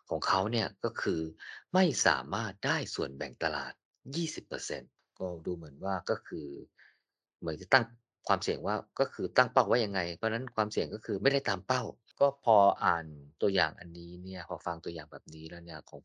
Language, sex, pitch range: Thai, male, 90-130 Hz